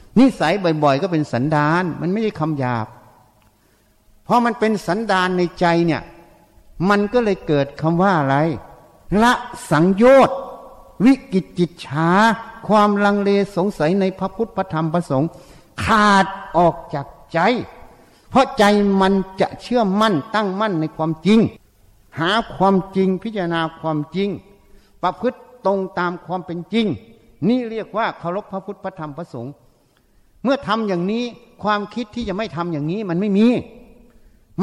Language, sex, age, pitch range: Thai, male, 60-79, 160-225 Hz